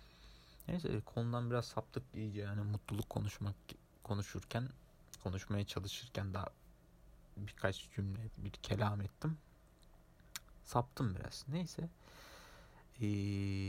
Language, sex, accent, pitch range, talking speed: Turkish, male, native, 100-115 Hz, 90 wpm